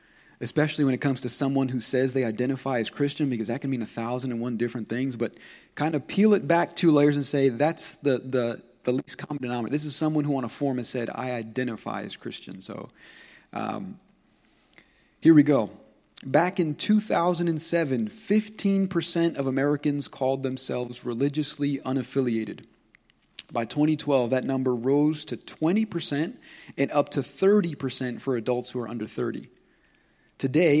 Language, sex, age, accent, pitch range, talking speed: English, male, 30-49, American, 125-150 Hz, 165 wpm